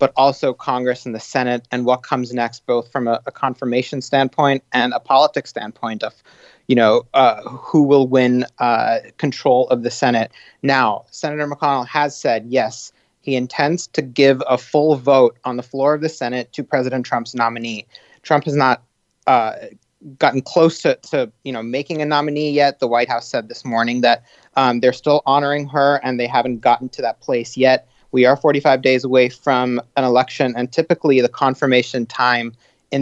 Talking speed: 185 wpm